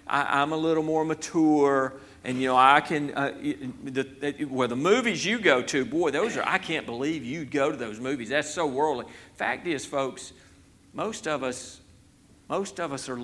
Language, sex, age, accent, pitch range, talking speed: English, male, 50-69, American, 135-205 Hz, 200 wpm